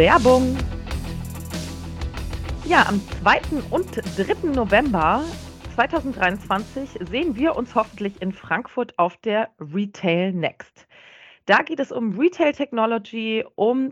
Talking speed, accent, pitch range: 110 wpm, German, 175-225 Hz